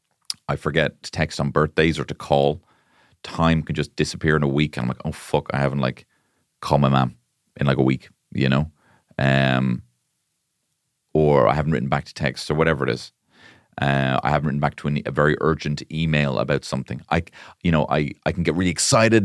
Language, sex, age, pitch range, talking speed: English, male, 30-49, 70-90 Hz, 210 wpm